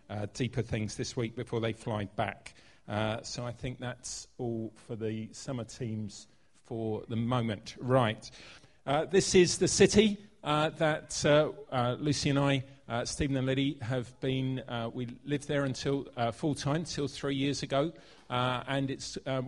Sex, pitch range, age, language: male, 120-150 Hz, 40-59, English